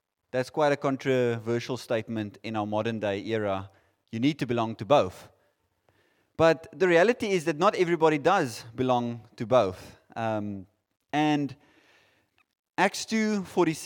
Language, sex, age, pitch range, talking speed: English, male, 30-49, 125-175 Hz, 130 wpm